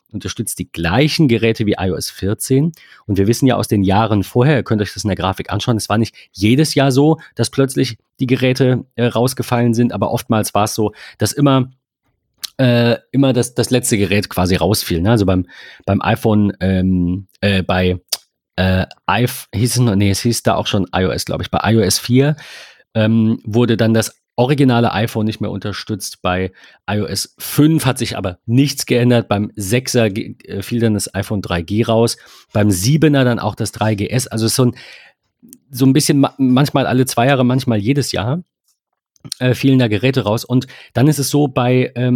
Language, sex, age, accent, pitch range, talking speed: German, male, 40-59, German, 105-130 Hz, 185 wpm